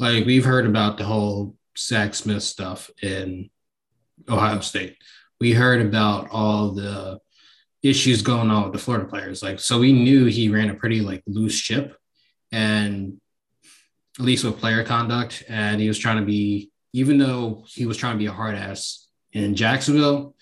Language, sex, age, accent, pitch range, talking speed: English, male, 20-39, American, 105-120 Hz, 175 wpm